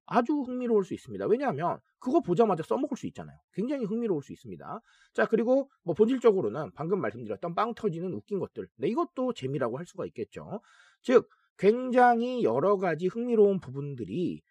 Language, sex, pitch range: Korean, male, 170-250 Hz